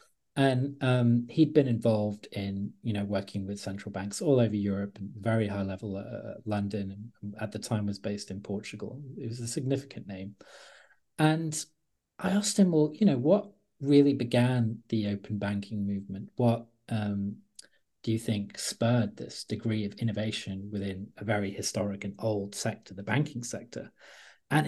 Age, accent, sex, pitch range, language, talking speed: 40-59, British, male, 105-140 Hz, English, 170 wpm